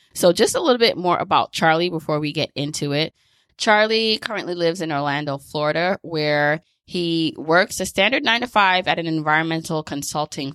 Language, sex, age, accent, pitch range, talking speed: English, female, 20-39, American, 150-180 Hz, 175 wpm